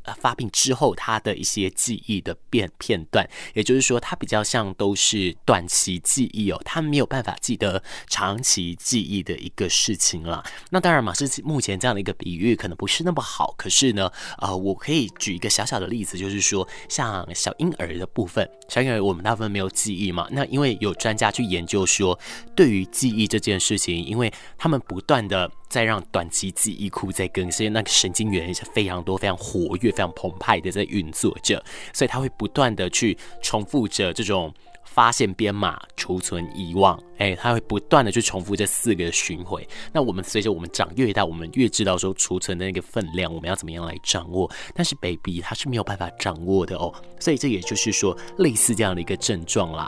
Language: Chinese